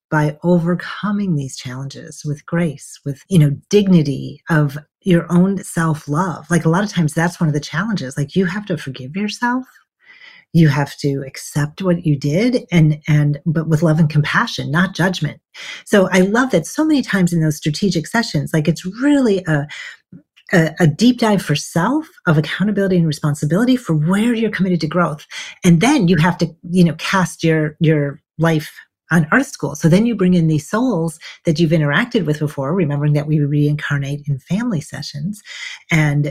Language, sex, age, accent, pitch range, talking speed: English, female, 40-59, American, 150-185 Hz, 180 wpm